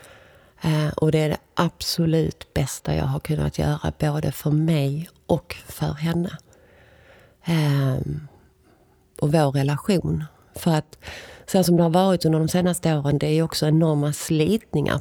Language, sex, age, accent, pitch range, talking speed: Swedish, female, 30-49, native, 135-160 Hz, 145 wpm